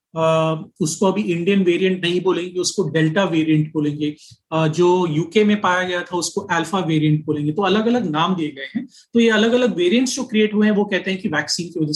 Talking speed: 220 wpm